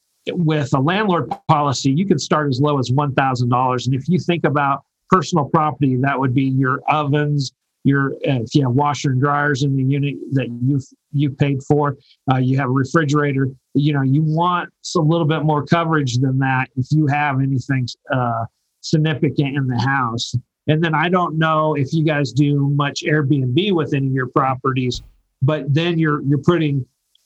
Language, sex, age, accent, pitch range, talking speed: English, male, 50-69, American, 130-155 Hz, 190 wpm